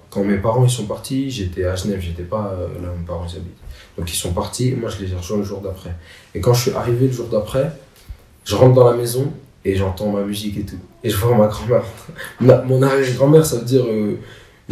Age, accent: 20-39, French